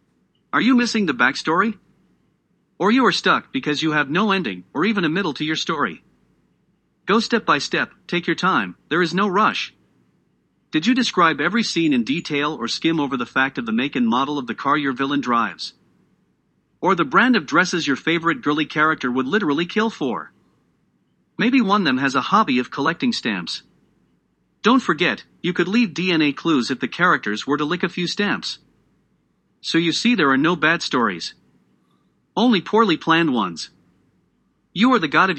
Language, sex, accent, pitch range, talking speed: English, male, American, 150-225 Hz, 190 wpm